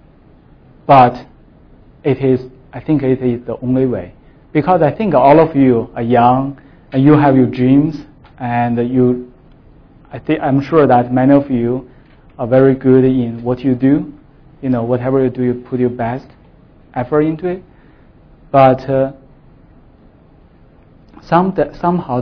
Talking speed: 155 wpm